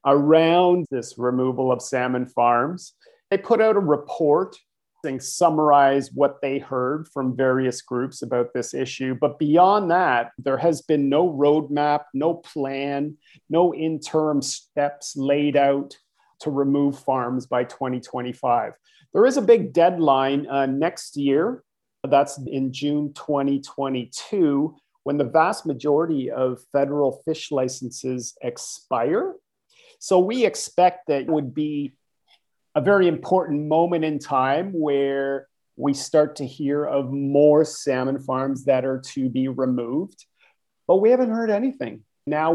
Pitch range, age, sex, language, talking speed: 135-155 Hz, 40-59, male, English, 135 wpm